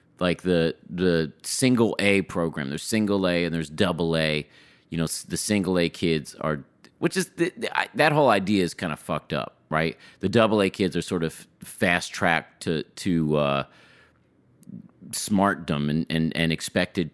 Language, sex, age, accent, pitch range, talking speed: English, male, 30-49, American, 75-95 Hz, 180 wpm